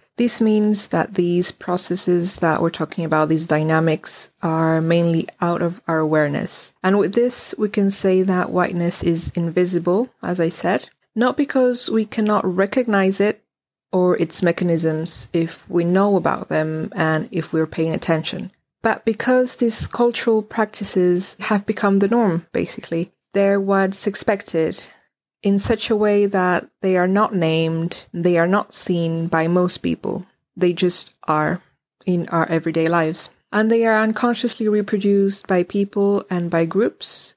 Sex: female